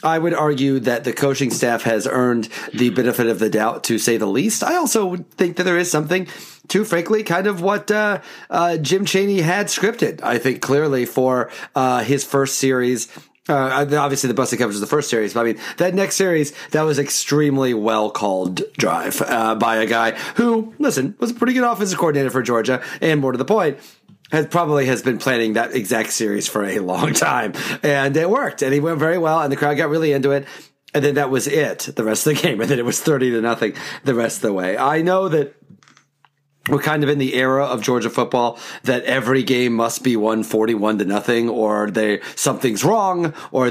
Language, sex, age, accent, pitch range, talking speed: English, male, 30-49, American, 115-160 Hz, 215 wpm